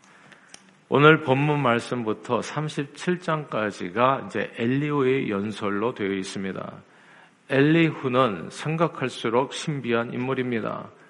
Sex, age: male, 50-69